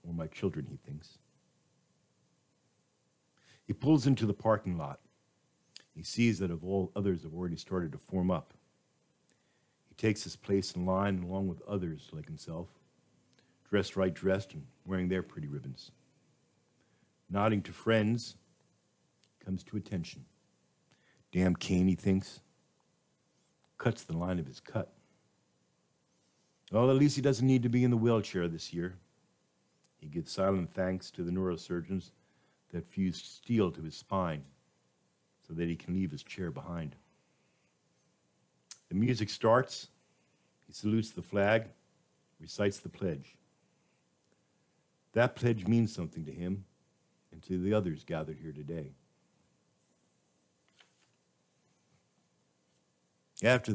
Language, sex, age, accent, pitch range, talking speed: English, male, 50-69, American, 80-105 Hz, 130 wpm